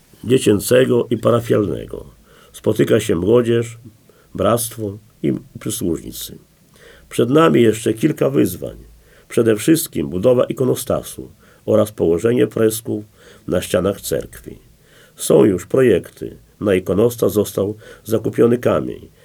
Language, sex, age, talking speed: Polish, male, 50-69, 100 wpm